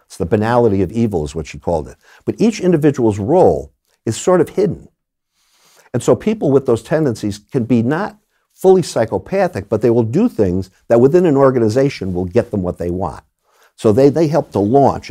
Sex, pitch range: male, 100-140 Hz